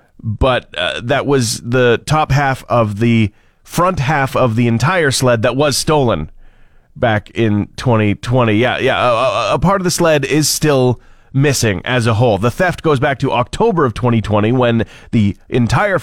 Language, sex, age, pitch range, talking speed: English, male, 30-49, 115-150 Hz, 170 wpm